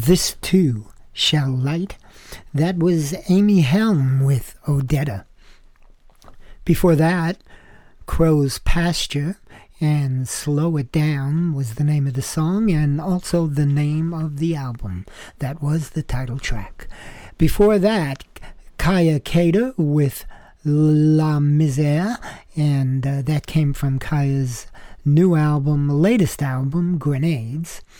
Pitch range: 140-170 Hz